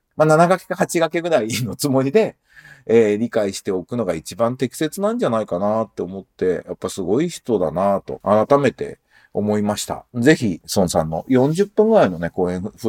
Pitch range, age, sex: 115-190 Hz, 40-59, male